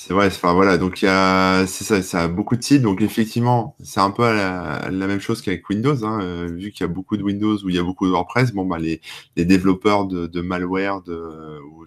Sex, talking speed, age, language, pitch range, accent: male, 265 wpm, 20-39, French, 90-110 Hz, French